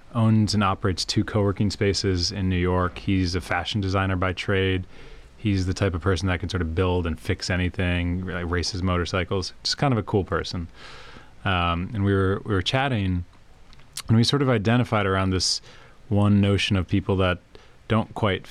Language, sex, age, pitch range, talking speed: English, male, 30-49, 90-105 Hz, 190 wpm